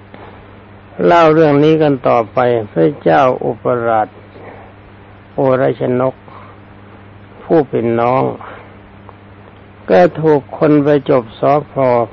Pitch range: 100-135 Hz